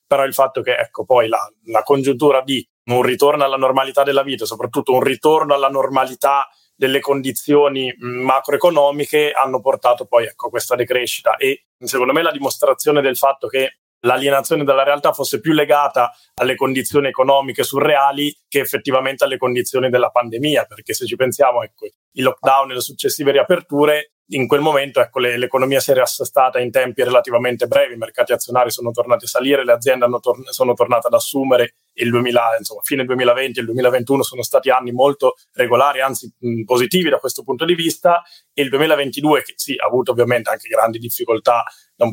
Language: Italian